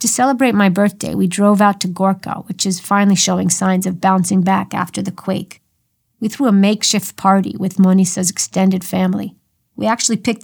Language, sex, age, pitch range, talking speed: English, female, 50-69, 185-205 Hz, 185 wpm